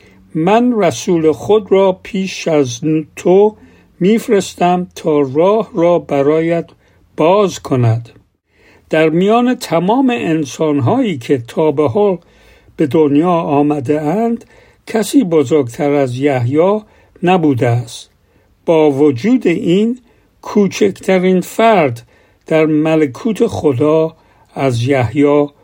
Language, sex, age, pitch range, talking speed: Persian, male, 60-79, 135-185 Hz, 100 wpm